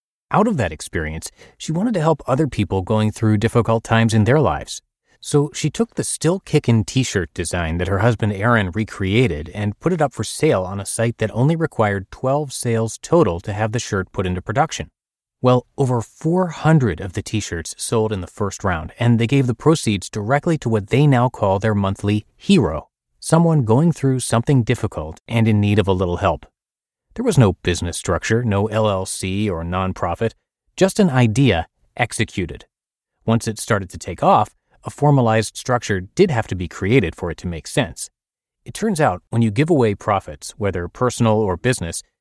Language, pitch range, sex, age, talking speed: English, 95-130 Hz, male, 30-49, 190 wpm